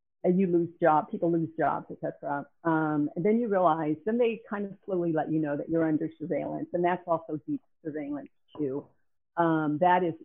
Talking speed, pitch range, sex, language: 205 wpm, 150-170 Hz, female, English